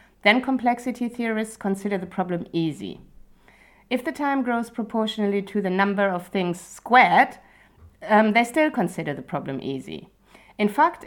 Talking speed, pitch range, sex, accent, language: 145 wpm, 180-225 Hz, female, German, English